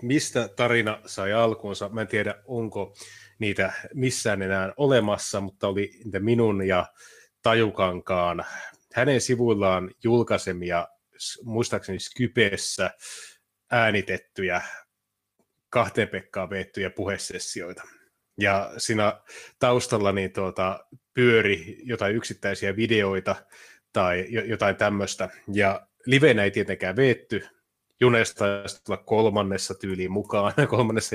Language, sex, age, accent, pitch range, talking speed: Finnish, male, 30-49, native, 95-120 Hz, 95 wpm